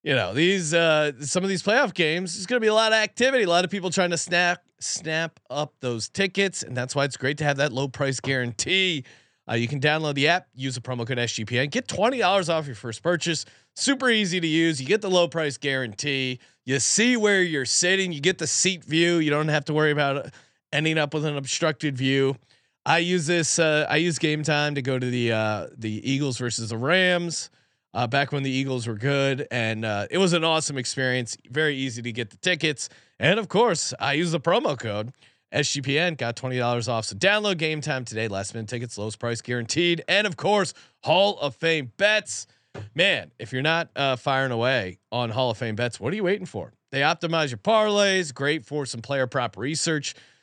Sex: male